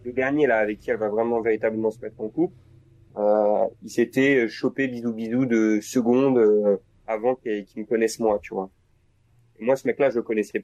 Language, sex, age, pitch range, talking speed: French, male, 30-49, 105-130 Hz, 210 wpm